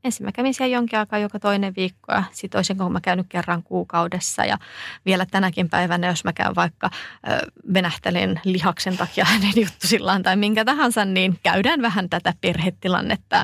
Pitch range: 180-220 Hz